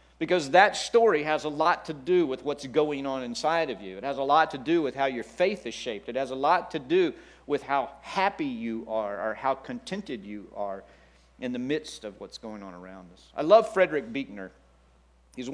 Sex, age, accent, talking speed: male, 50-69, American, 220 wpm